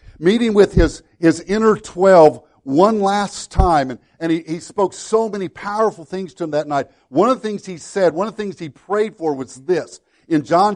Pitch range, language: 155-200 Hz, English